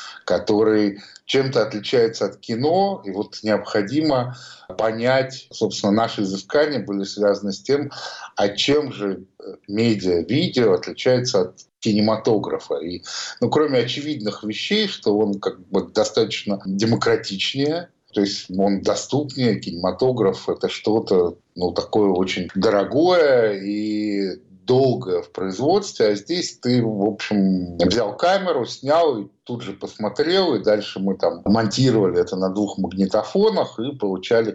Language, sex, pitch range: Russian, male, 100-135 Hz